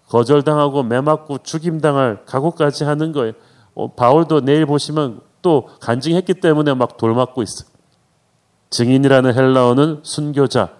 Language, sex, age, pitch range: Korean, male, 40-59, 120-150 Hz